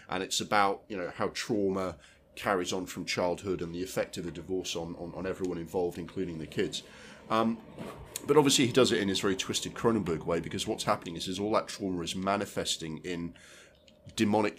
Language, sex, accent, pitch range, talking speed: English, male, British, 90-110 Hz, 200 wpm